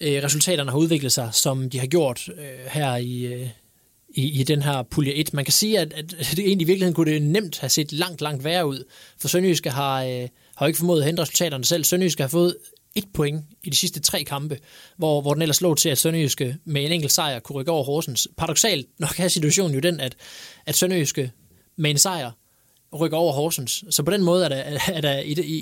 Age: 20-39